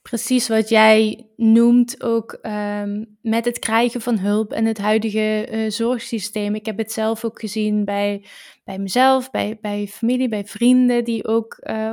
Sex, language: female, Dutch